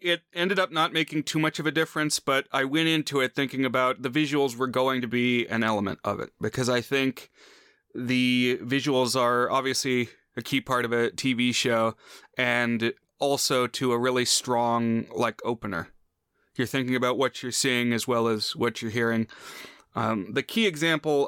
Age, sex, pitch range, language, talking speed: 30-49, male, 115-135 Hz, English, 185 wpm